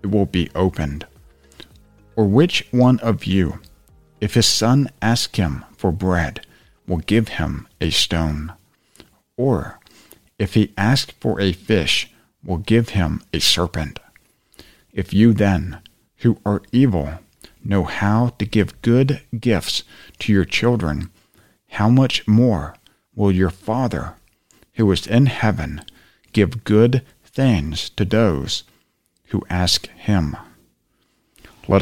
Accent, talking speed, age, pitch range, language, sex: American, 130 wpm, 50-69, 90-115 Hz, English, male